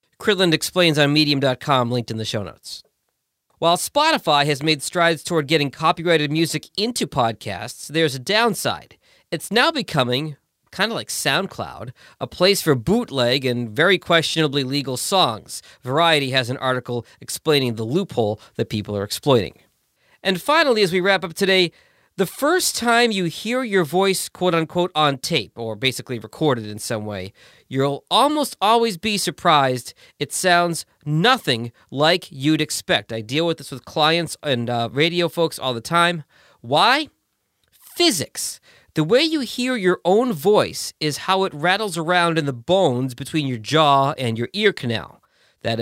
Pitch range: 130-180 Hz